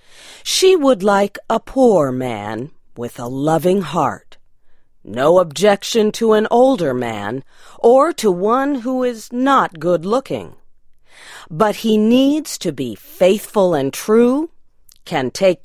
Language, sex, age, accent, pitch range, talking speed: English, female, 40-59, American, 145-230 Hz, 125 wpm